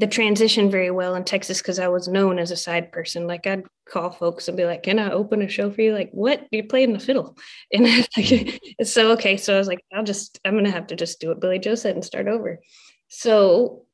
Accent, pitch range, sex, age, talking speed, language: American, 180-205 Hz, female, 20-39, 255 wpm, English